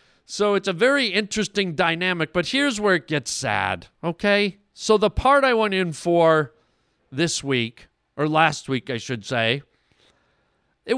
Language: English